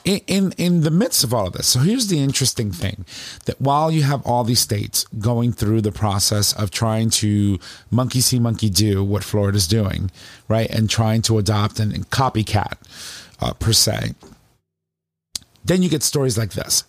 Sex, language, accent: male, English, American